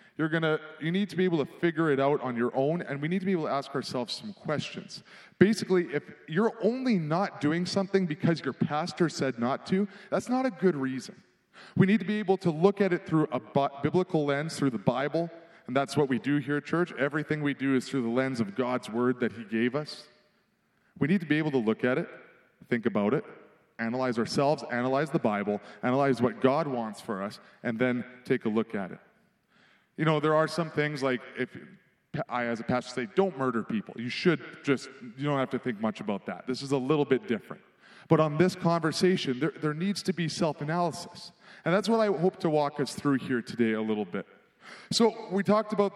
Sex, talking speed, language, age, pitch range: male, 225 wpm, English, 30-49, 130-180 Hz